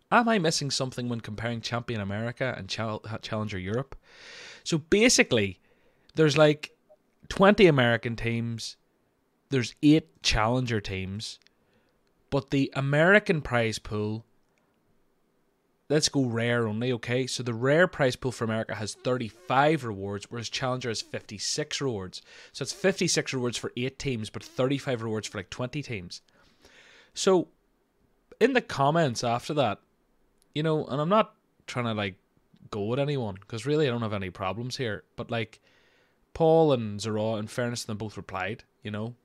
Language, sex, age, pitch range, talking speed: English, male, 20-39, 105-140 Hz, 150 wpm